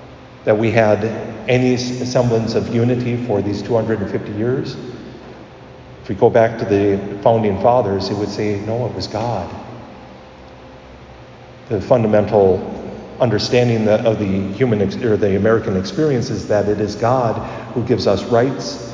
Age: 50-69